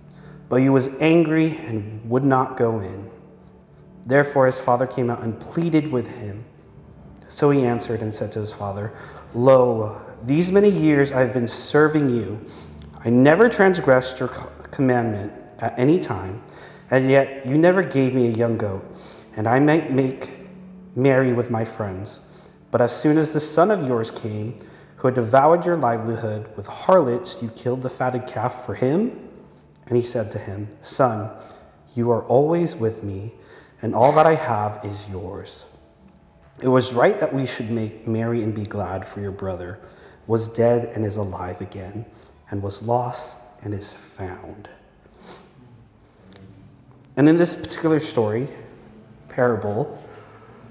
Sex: male